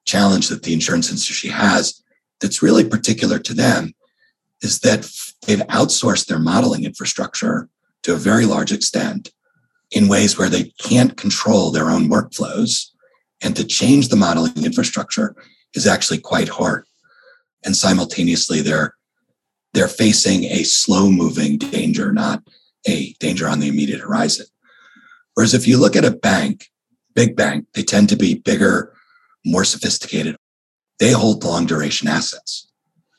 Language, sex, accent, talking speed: English, male, American, 140 wpm